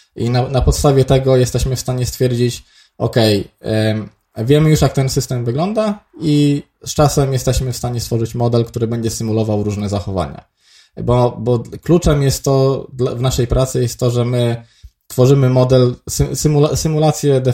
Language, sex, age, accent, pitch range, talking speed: Polish, male, 20-39, native, 110-130 Hz, 160 wpm